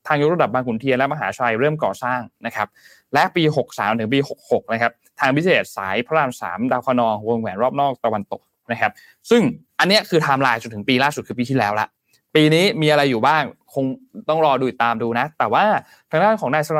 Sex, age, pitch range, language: male, 20-39, 120-155 Hz, Thai